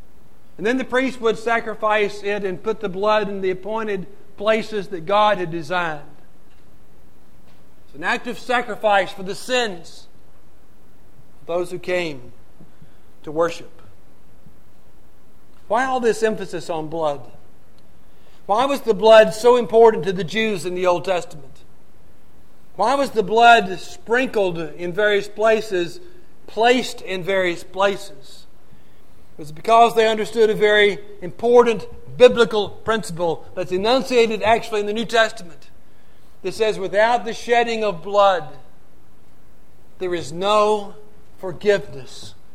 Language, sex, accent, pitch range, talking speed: English, male, American, 180-230 Hz, 130 wpm